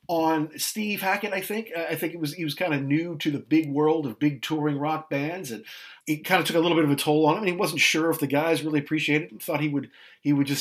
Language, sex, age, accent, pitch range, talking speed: English, male, 50-69, American, 140-185 Hz, 295 wpm